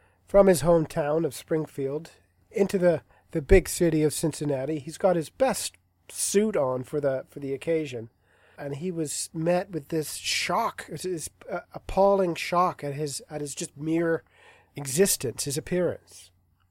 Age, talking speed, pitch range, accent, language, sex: 40-59, 150 wpm, 135-175 Hz, American, English, male